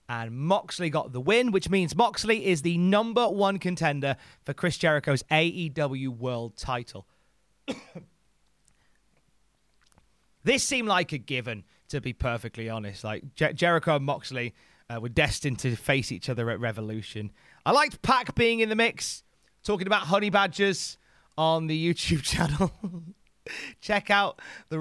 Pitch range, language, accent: 120-180 Hz, English, British